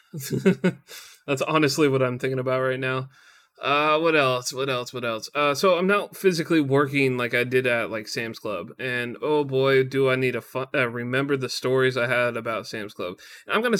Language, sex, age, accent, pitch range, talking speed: English, male, 20-39, American, 125-155 Hz, 215 wpm